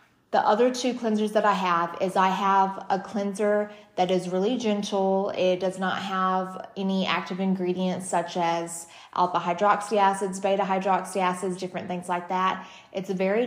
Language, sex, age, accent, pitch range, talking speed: English, female, 20-39, American, 180-195 Hz, 170 wpm